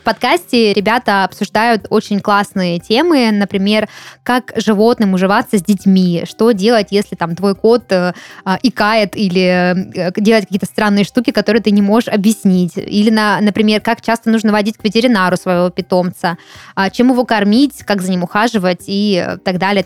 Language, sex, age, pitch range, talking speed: Russian, female, 20-39, 185-225 Hz, 150 wpm